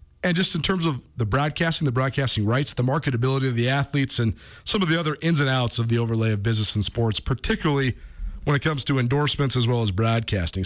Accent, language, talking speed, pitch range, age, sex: American, English, 225 wpm, 120-160 Hz, 40-59, male